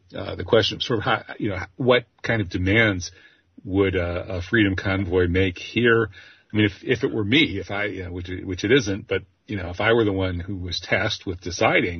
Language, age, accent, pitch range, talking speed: English, 40-59, American, 90-105 Hz, 240 wpm